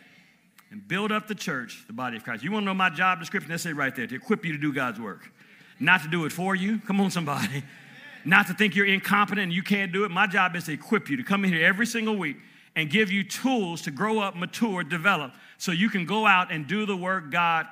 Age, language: 50-69, English